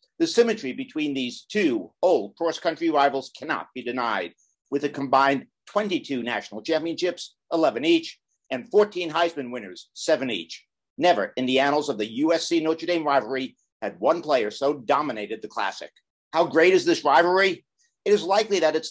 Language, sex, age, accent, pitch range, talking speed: English, male, 50-69, American, 140-200 Hz, 160 wpm